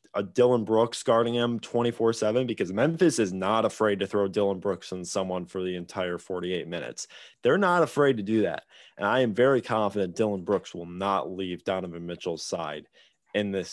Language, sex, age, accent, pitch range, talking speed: English, male, 20-39, American, 95-120 Hz, 190 wpm